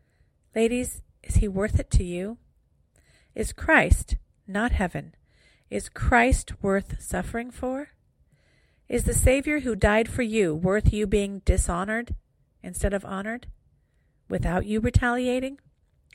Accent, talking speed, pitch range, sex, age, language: American, 125 wpm, 170-225 Hz, female, 50-69, English